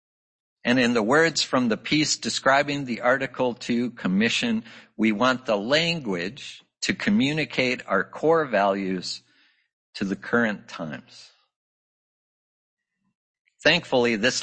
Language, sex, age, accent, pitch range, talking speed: English, male, 60-79, American, 110-165 Hz, 110 wpm